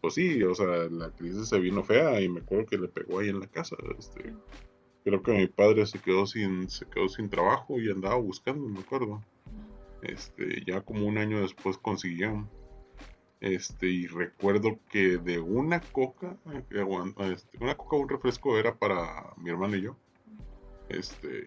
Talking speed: 175 wpm